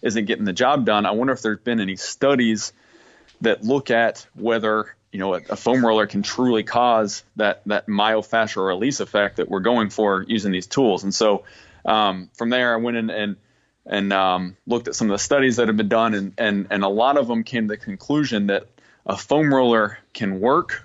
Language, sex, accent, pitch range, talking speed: English, male, American, 105-125 Hz, 215 wpm